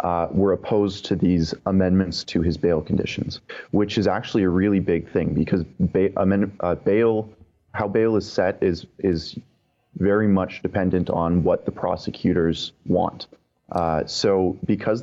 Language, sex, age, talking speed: English, male, 30-49, 155 wpm